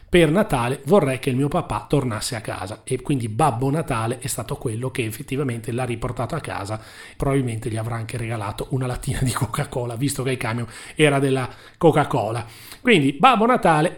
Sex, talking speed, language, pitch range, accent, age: male, 180 wpm, Italian, 125-175 Hz, native, 40-59